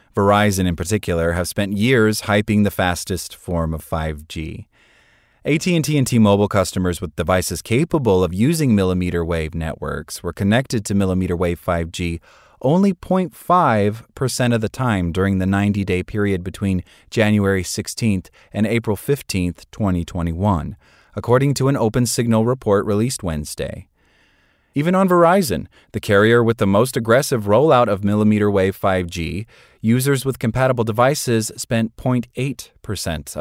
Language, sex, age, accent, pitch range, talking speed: English, male, 30-49, American, 90-120 Hz, 130 wpm